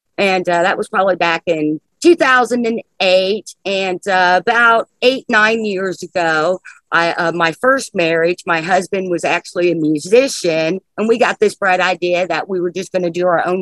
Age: 50-69